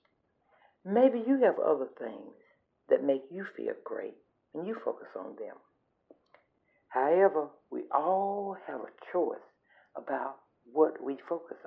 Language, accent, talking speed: English, American, 130 wpm